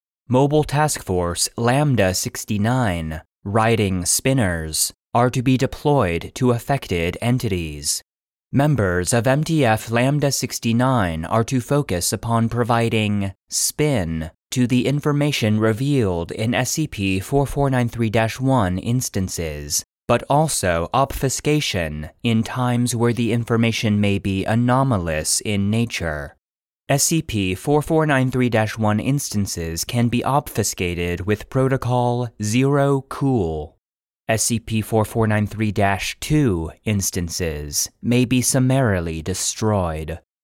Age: 30-49